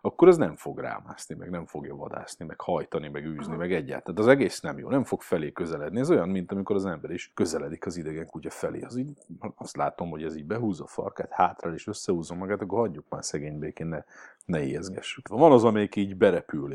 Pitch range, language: 85-120 Hz, Hungarian